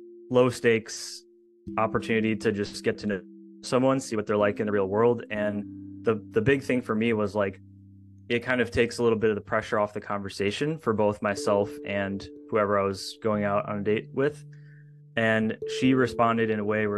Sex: male